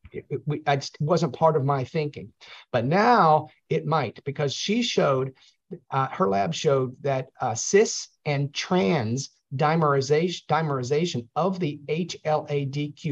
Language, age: English, 50-69